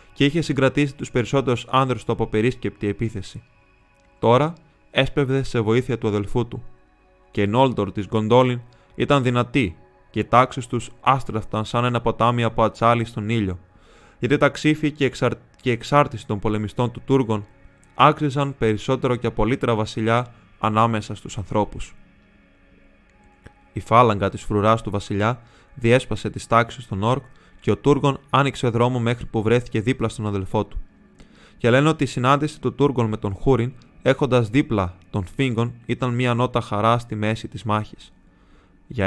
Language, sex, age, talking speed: Greek, male, 20-39, 150 wpm